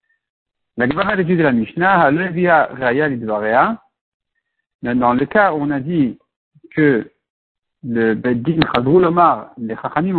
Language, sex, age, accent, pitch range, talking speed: French, male, 60-79, French, 135-180 Hz, 75 wpm